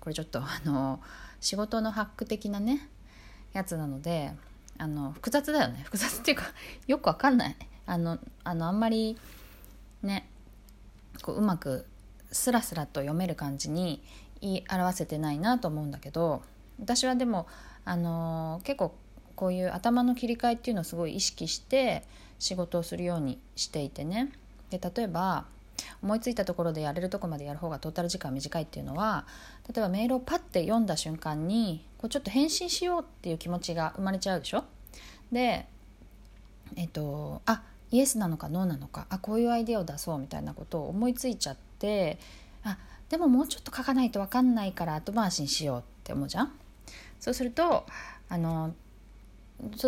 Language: Japanese